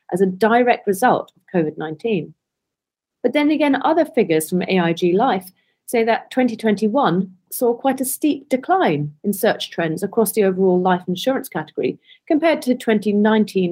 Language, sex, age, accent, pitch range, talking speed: English, female, 40-59, British, 180-245 Hz, 150 wpm